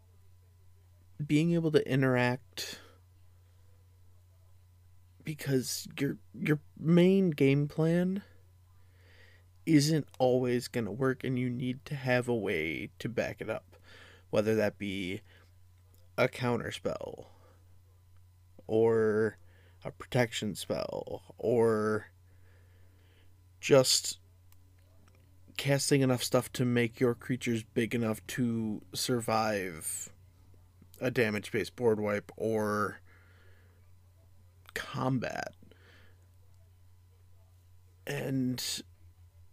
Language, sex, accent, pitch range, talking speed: English, male, American, 90-125 Hz, 85 wpm